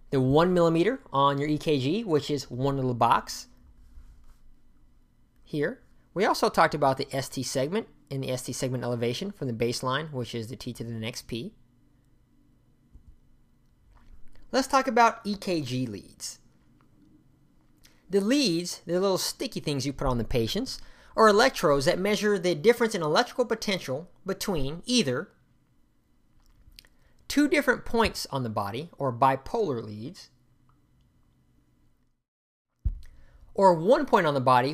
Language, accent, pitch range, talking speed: English, American, 125-195 Hz, 135 wpm